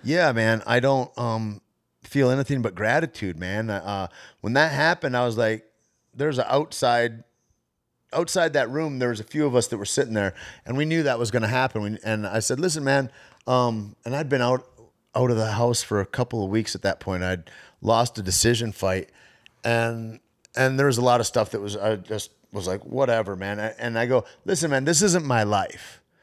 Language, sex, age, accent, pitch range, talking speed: English, male, 30-49, American, 105-125 Hz, 215 wpm